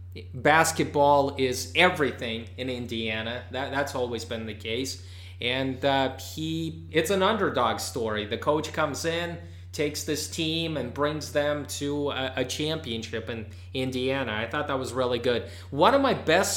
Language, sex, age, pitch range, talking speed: English, male, 30-49, 105-150 Hz, 160 wpm